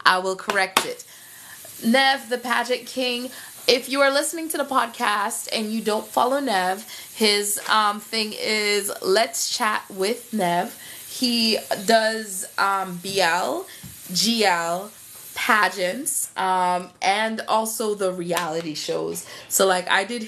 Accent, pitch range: American, 180-250 Hz